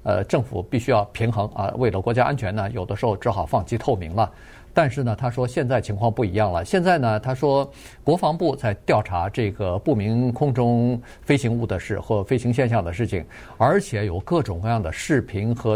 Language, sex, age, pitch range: Chinese, male, 50-69, 105-140 Hz